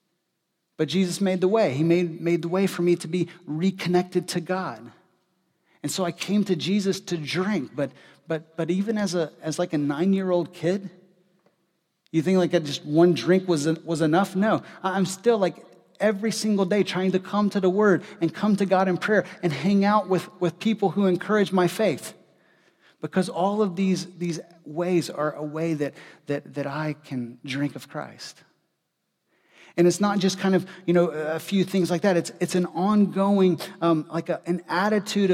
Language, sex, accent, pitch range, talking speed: English, male, American, 165-195 Hz, 195 wpm